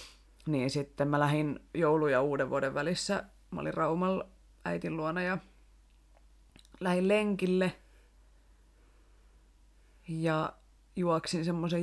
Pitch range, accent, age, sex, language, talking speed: 115-170 Hz, native, 30-49, female, Finnish, 100 wpm